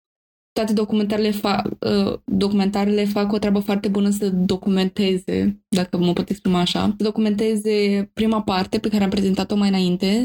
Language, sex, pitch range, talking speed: Romanian, female, 190-215 Hz, 150 wpm